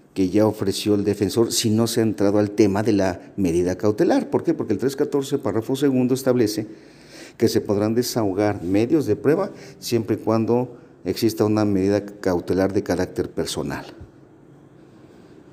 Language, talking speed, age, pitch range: Spanish, 160 wpm, 50-69, 95-120 Hz